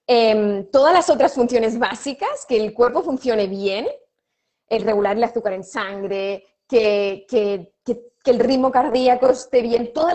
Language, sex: Spanish, female